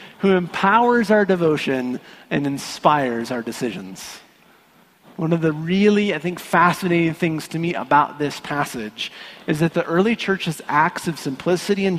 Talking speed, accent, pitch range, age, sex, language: 150 wpm, American, 135-185 Hz, 30-49, male, English